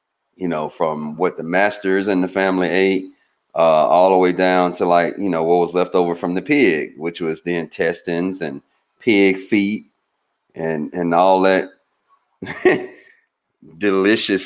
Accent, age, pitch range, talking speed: American, 40-59, 85-120 Hz, 160 wpm